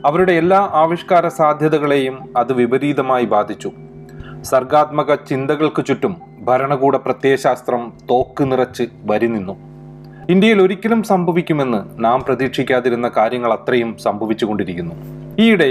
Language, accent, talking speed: Malayalam, native, 90 wpm